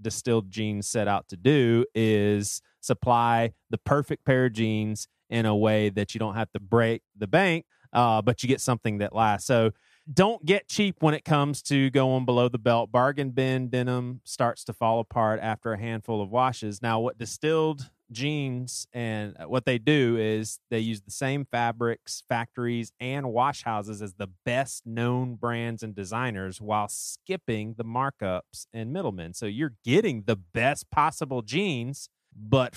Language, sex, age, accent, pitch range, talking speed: English, male, 30-49, American, 110-135 Hz, 170 wpm